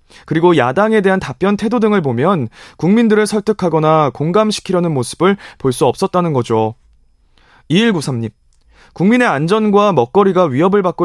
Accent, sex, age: native, male, 20-39